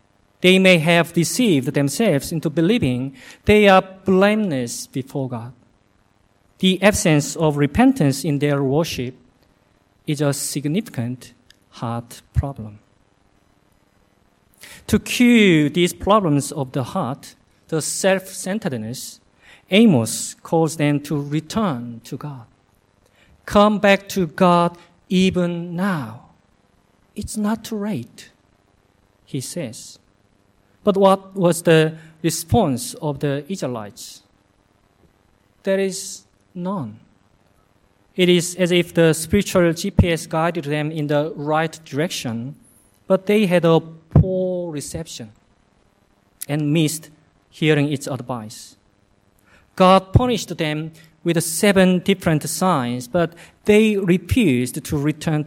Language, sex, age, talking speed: English, male, 50-69, 110 wpm